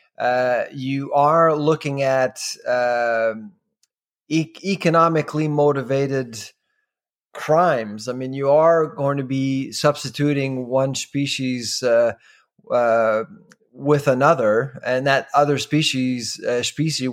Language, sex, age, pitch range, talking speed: English, male, 30-49, 130-160 Hz, 105 wpm